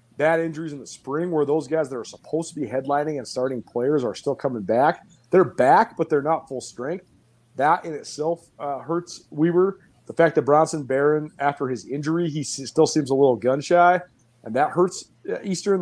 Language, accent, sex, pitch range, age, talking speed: English, American, male, 130-165 Hz, 30-49, 200 wpm